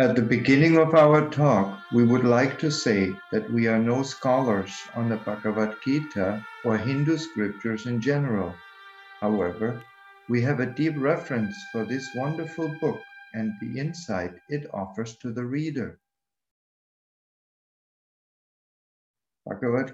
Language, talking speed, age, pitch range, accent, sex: English, 130 wpm, 60-79, 110-150 Hz, German, male